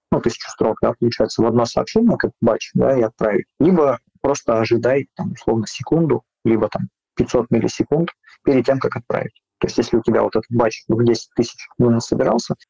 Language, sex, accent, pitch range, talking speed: Russian, male, native, 110-125 Hz, 185 wpm